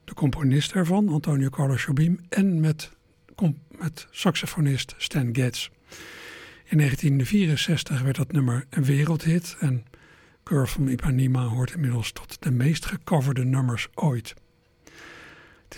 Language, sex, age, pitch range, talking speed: Dutch, male, 60-79, 130-165 Hz, 125 wpm